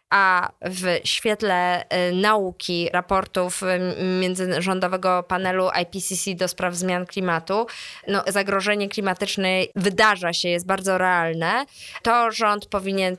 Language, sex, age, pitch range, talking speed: Polish, female, 20-39, 175-190 Hz, 105 wpm